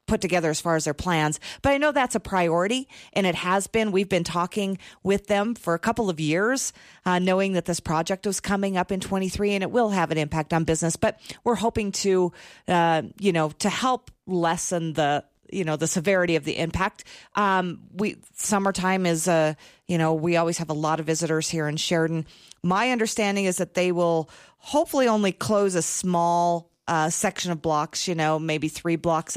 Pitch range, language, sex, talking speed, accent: 160-195 Hz, English, female, 205 wpm, American